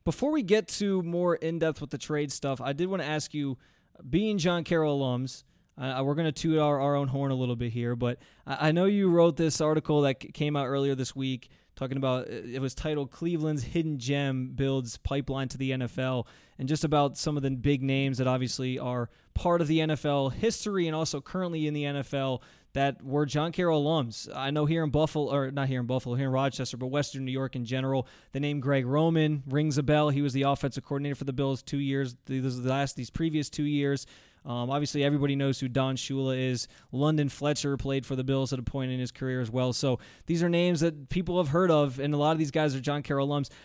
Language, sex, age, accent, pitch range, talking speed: English, male, 20-39, American, 130-155 Hz, 230 wpm